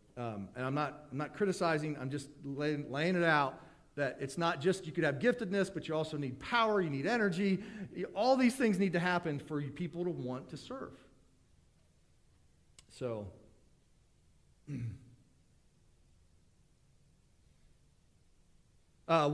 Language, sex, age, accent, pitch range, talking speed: English, male, 40-59, American, 125-190 Hz, 135 wpm